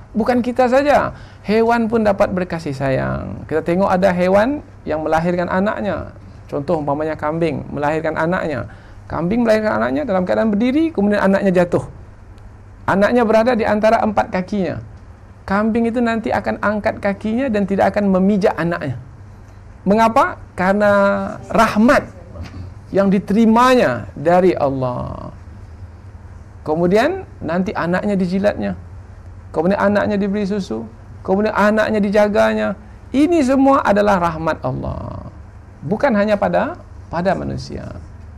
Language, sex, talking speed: Indonesian, male, 115 wpm